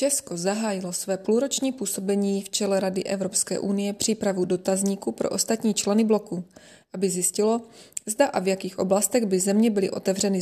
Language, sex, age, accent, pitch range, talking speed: Czech, female, 20-39, native, 195-220 Hz, 155 wpm